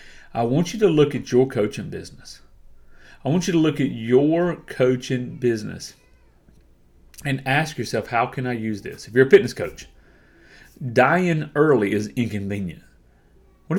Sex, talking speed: male, 155 wpm